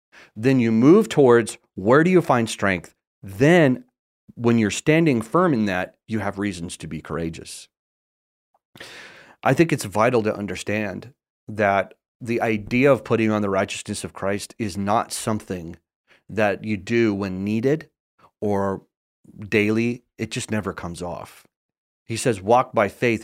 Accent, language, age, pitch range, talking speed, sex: American, English, 30-49, 100-125 Hz, 150 wpm, male